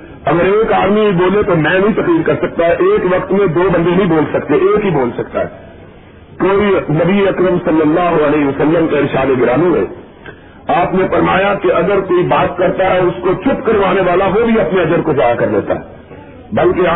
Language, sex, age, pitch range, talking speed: Urdu, male, 50-69, 175-200 Hz, 210 wpm